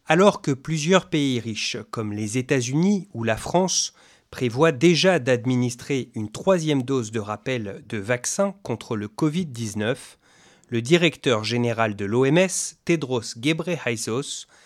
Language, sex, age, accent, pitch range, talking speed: English, male, 30-49, French, 115-155 Hz, 125 wpm